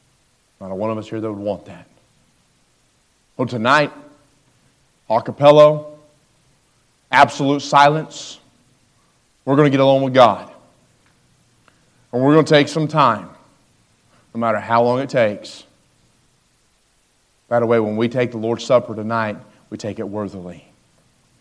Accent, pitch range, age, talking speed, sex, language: American, 105-130 Hz, 40-59, 140 wpm, male, English